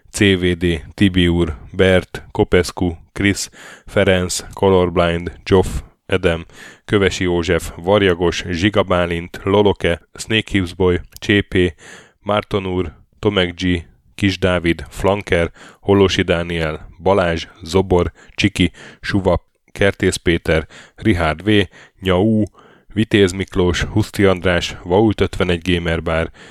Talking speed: 90 wpm